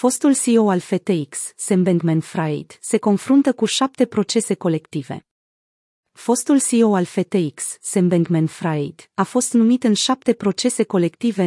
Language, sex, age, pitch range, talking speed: Romanian, female, 30-49, 180-220 Hz, 130 wpm